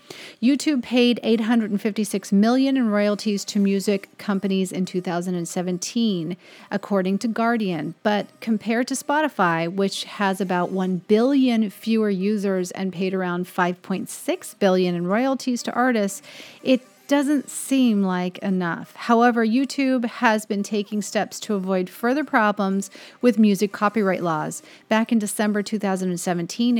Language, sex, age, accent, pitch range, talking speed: English, female, 40-59, American, 190-230 Hz, 130 wpm